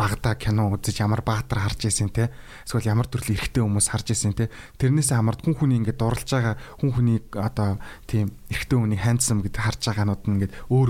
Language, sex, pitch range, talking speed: English, male, 110-135 Hz, 170 wpm